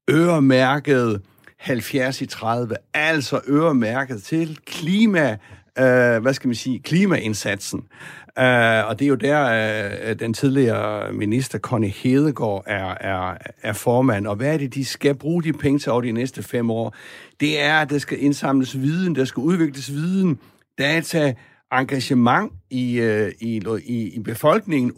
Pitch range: 120-150 Hz